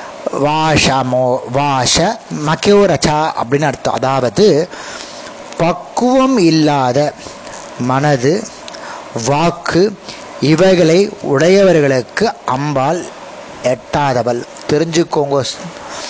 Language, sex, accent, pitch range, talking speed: Tamil, male, native, 130-170 Hz, 55 wpm